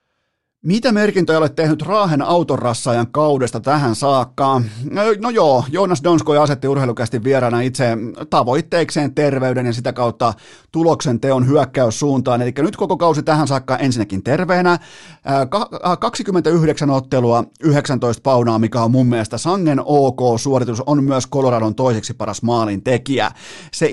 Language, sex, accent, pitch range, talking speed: Finnish, male, native, 120-155 Hz, 130 wpm